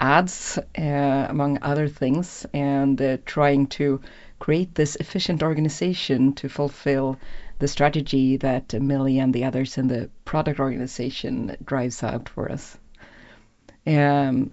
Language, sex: English, female